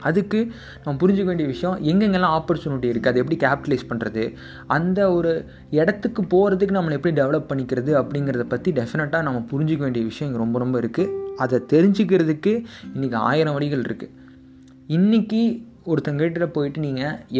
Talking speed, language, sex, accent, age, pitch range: 140 wpm, Tamil, male, native, 20-39, 125-170 Hz